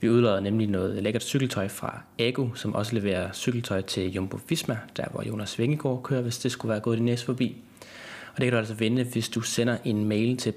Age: 20-39